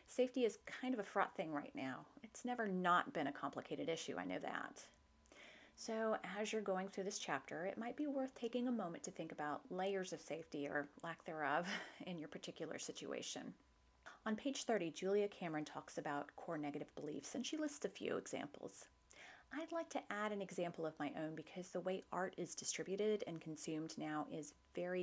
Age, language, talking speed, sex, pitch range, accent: 30-49, English, 195 wpm, female, 165-245 Hz, American